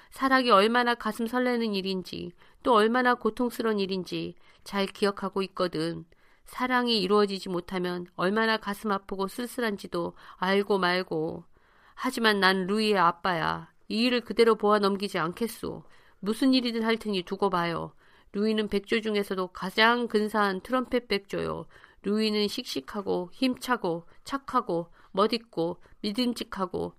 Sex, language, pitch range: female, Korean, 185-235 Hz